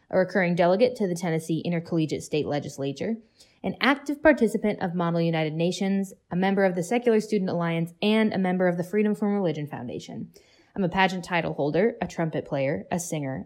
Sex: female